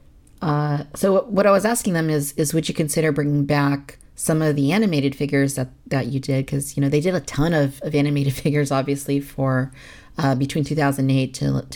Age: 40-59